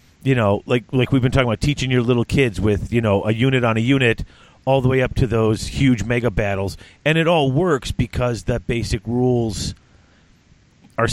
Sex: male